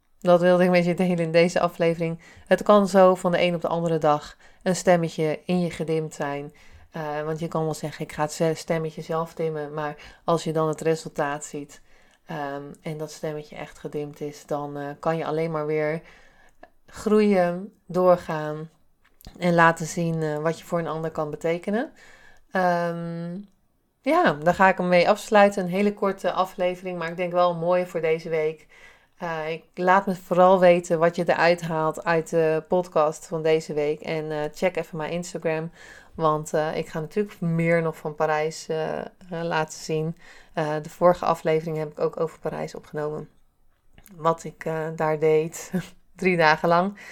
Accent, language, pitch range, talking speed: Dutch, Dutch, 155-180 Hz, 180 wpm